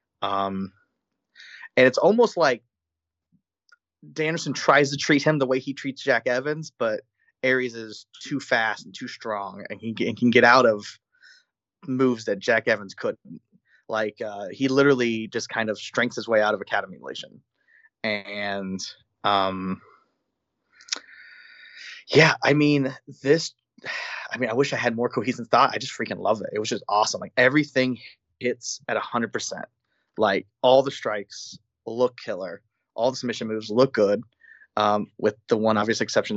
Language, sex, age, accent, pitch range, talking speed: English, male, 30-49, American, 110-135 Hz, 165 wpm